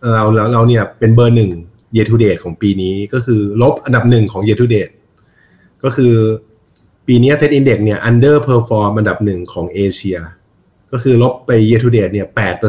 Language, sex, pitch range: Thai, male, 100-120 Hz